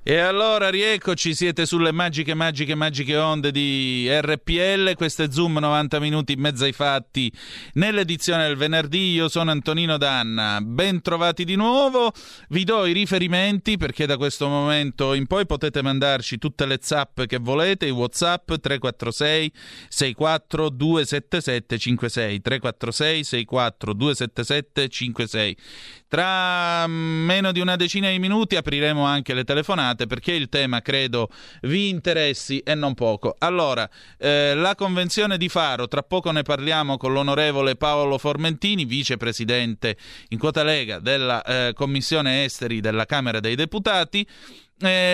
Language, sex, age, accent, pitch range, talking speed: Italian, male, 30-49, native, 125-165 Hz, 135 wpm